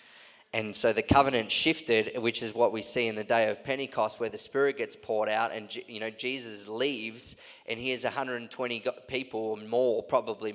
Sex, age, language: male, 20-39, English